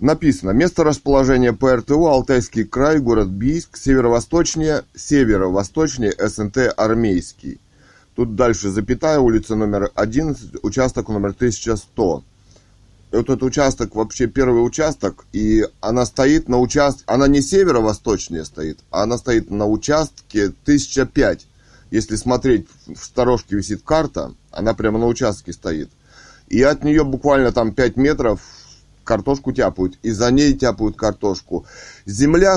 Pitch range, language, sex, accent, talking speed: 110-140 Hz, Russian, male, native, 125 wpm